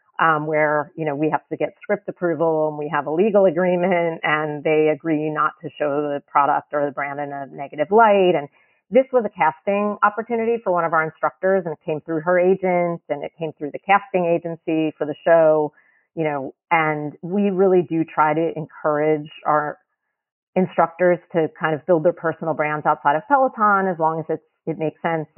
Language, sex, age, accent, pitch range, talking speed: English, female, 40-59, American, 155-195 Hz, 205 wpm